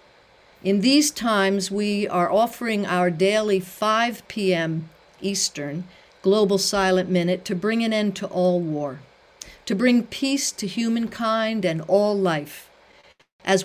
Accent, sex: American, female